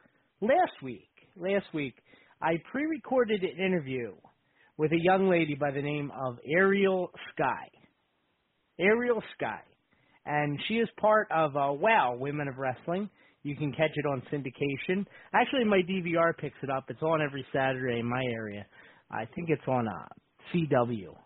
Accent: American